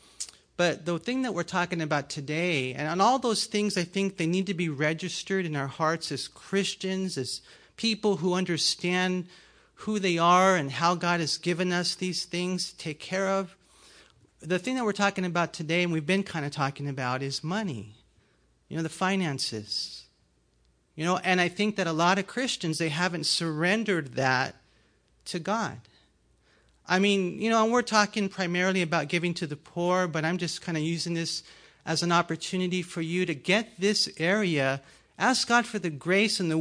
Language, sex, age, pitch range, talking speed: English, male, 40-59, 150-190 Hz, 190 wpm